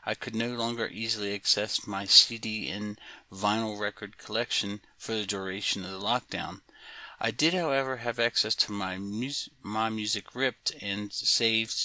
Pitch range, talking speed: 100-115 Hz, 150 wpm